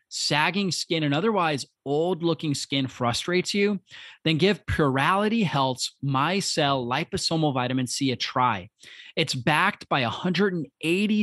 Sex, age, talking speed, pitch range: male, 30-49, 130 wpm, 125-165 Hz